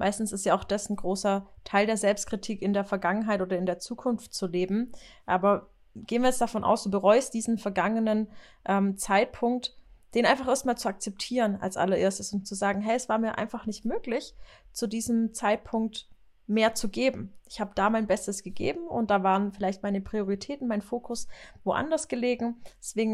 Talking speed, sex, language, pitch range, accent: 180 wpm, female, German, 200-245 Hz, German